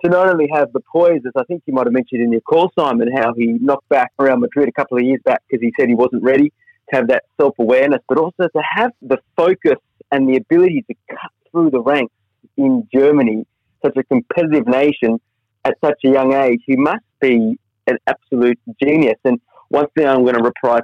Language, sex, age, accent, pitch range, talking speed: English, male, 30-49, Australian, 120-145 Hz, 220 wpm